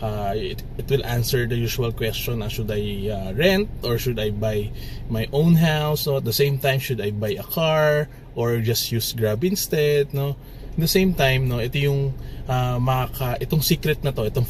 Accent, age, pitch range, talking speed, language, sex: Filipino, 20-39, 115-140 Hz, 205 wpm, English, male